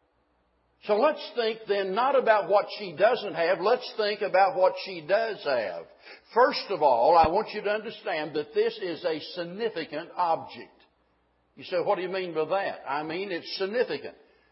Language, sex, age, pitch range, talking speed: English, male, 60-79, 170-255 Hz, 180 wpm